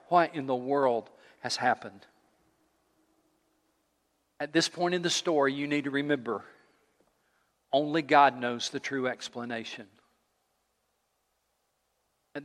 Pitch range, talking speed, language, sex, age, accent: 130-160 Hz, 110 wpm, English, male, 50-69, American